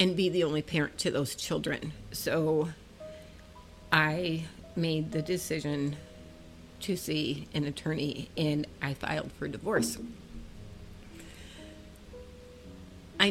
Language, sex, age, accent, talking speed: English, female, 40-59, American, 105 wpm